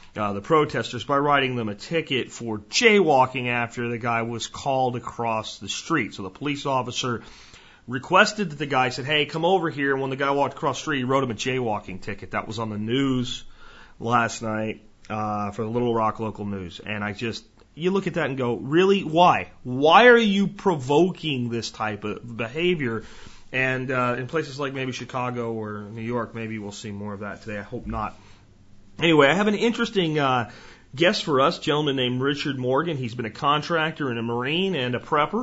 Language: English